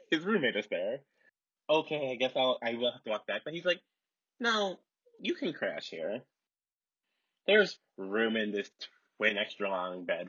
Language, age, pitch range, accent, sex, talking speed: English, 20-39, 110-170 Hz, American, male, 175 wpm